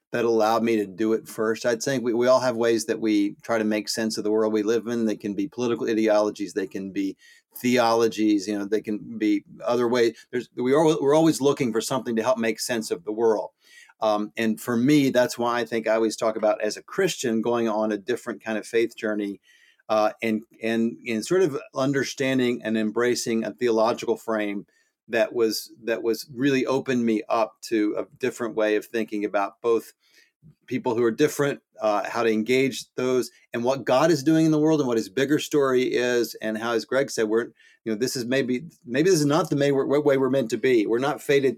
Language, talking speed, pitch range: English, 225 wpm, 110-130 Hz